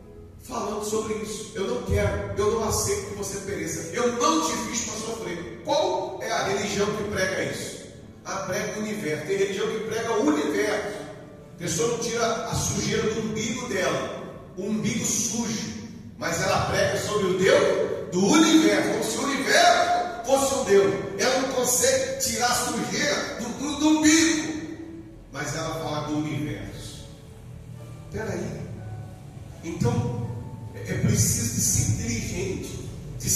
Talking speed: 155 wpm